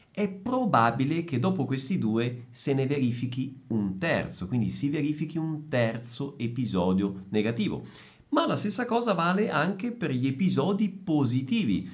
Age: 50-69